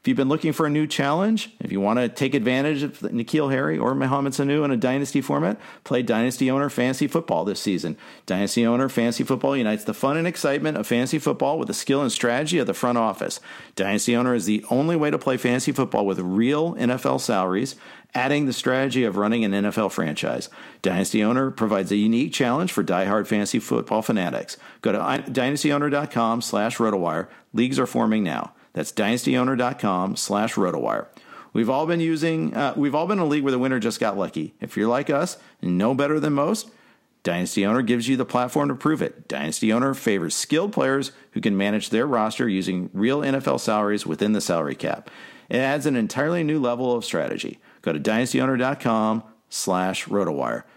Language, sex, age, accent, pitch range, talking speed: English, male, 50-69, American, 110-145 Hz, 185 wpm